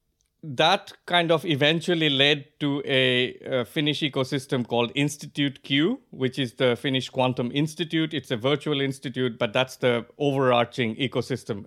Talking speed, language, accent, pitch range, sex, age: 145 wpm, Finnish, Indian, 110-140 Hz, male, 50-69